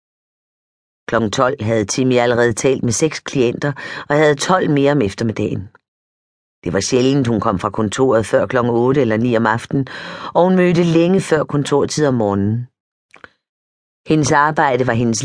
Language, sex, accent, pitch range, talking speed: Danish, female, native, 120-150 Hz, 160 wpm